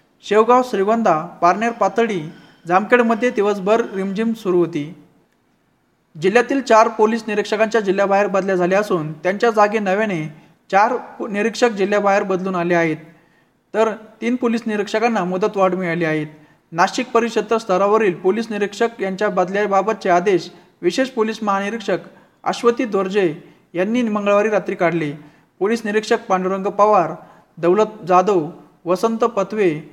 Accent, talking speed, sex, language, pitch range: native, 115 wpm, male, Marathi, 180-220 Hz